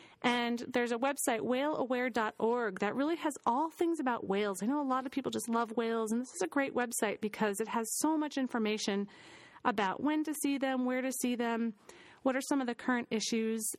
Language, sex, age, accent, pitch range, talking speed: English, female, 30-49, American, 210-265 Hz, 215 wpm